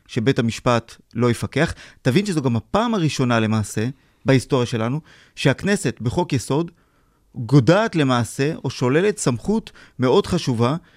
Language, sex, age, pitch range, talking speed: Hebrew, male, 30-49, 115-155 Hz, 120 wpm